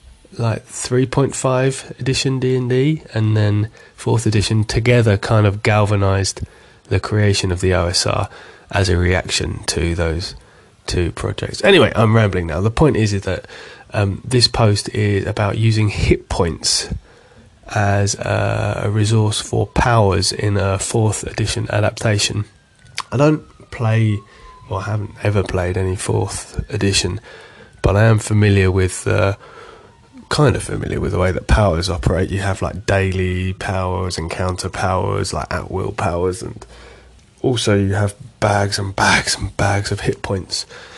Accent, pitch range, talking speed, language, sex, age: British, 95-115 Hz, 150 wpm, English, male, 20-39